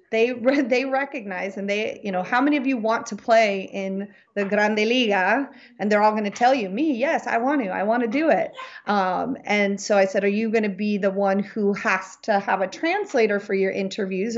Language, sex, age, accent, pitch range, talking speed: English, female, 30-49, American, 190-220 Hz, 235 wpm